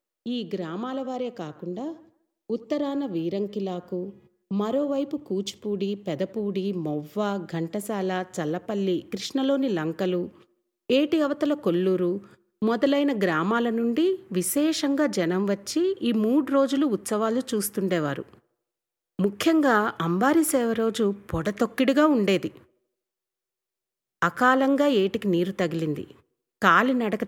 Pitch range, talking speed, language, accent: 180-265 Hz, 80 wpm, Telugu, native